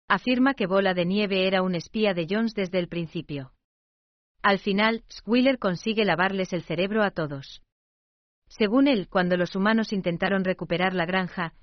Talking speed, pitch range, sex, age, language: 160 wpm, 170-205 Hz, female, 40-59, Spanish